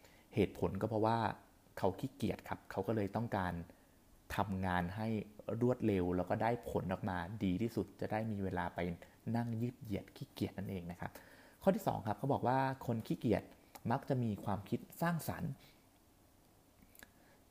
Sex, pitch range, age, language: male, 95-115 Hz, 30-49, Thai